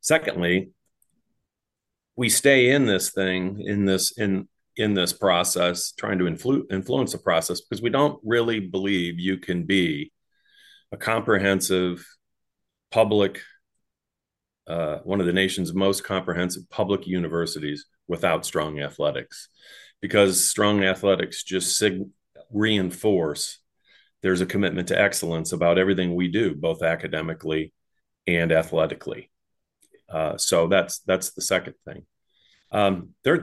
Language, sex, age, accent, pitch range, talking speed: English, male, 40-59, American, 85-100 Hz, 125 wpm